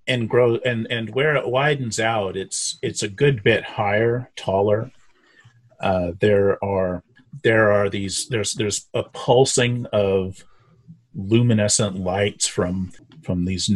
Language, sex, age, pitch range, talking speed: English, male, 30-49, 95-120 Hz, 135 wpm